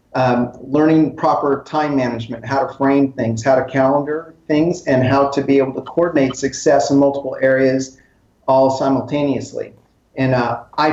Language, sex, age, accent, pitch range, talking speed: English, male, 40-59, American, 130-155 Hz, 160 wpm